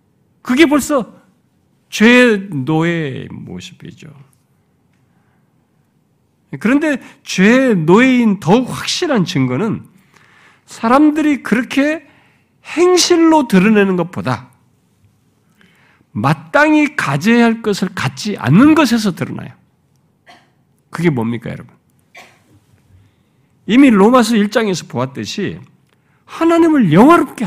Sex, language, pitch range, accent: male, Korean, 170-280 Hz, native